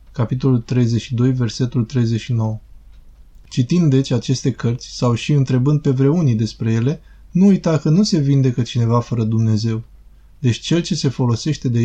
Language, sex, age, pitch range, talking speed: Romanian, male, 20-39, 120-145 Hz, 150 wpm